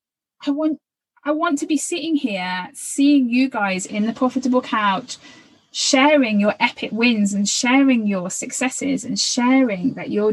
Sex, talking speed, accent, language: female, 155 wpm, British, English